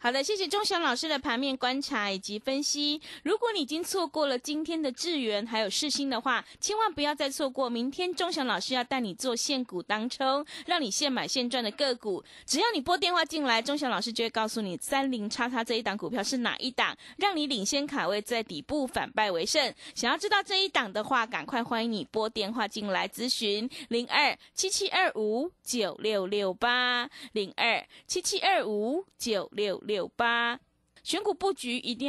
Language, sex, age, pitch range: Chinese, female, 20-39, 215-300 Hz